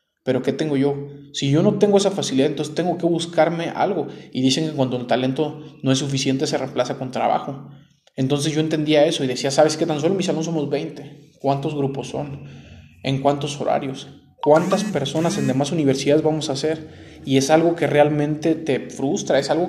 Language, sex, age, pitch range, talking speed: Spanish, male, 20-39, 135-155 Hz, 200 wpm